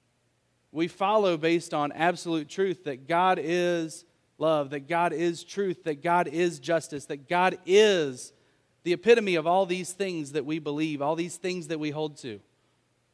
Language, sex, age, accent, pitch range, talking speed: English, male, 30-49, American, 130-175 Hz, 170 wpm